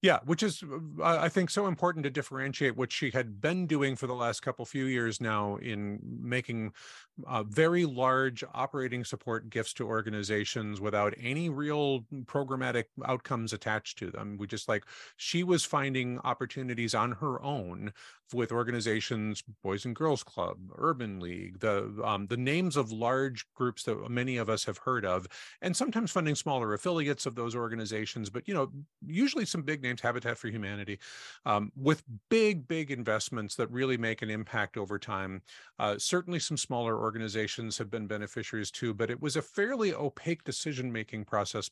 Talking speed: 170 wpm